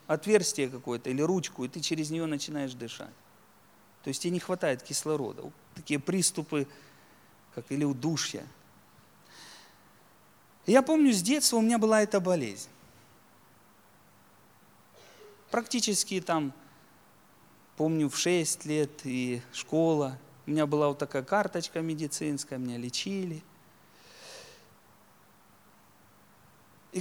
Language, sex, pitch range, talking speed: Russian, male, 135-215 Hz, 105 wpm